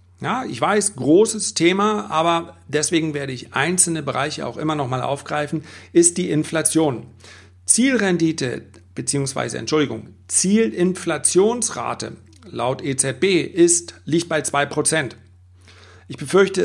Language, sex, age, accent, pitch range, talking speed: German, male, 40-59, German, 110-160 Hz, 110 wpm